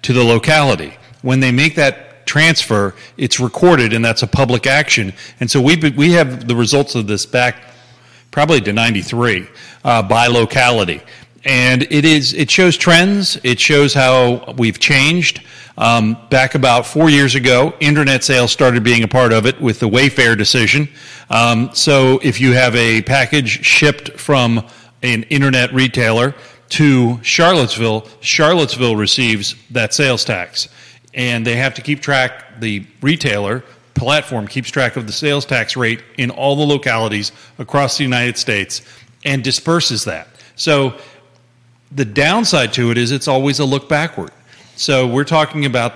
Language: English